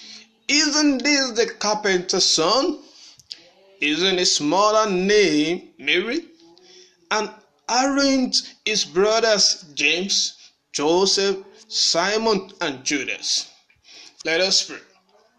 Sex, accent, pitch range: male, Nigerian, 180-245 Hz